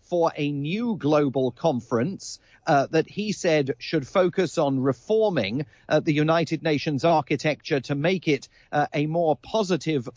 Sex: male